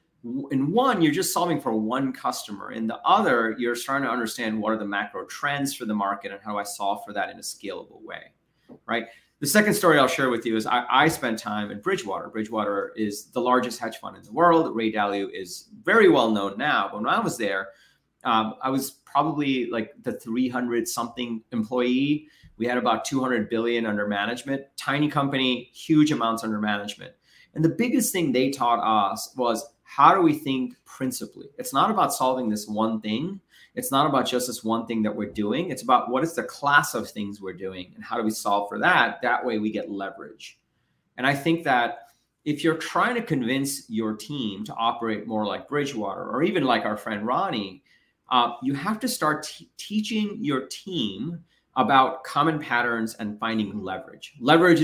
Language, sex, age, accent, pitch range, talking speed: English, male, 30-49, American, 110-145 Hz, 195 wpm